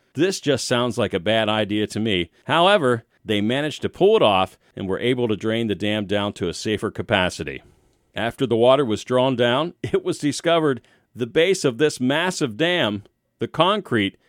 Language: English